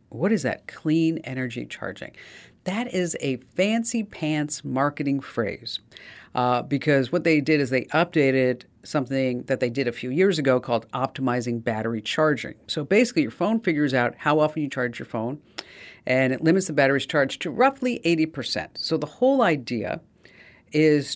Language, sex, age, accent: English, female, 50-69, American